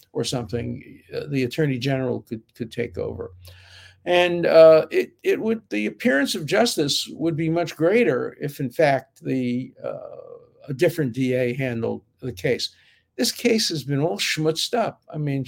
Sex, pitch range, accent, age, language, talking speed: male, 130-175 Hz, American, 50-69, English, 165 wpm